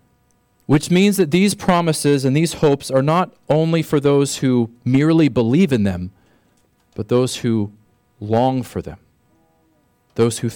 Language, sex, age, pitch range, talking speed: English, male, 40-59, 120-160 Hz, 150 wpm